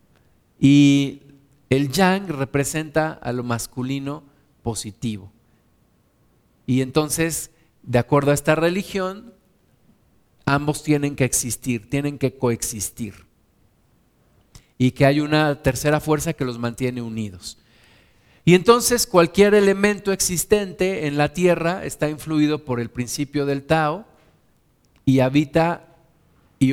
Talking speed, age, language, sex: 110 wpm, 50-69, Spanish, male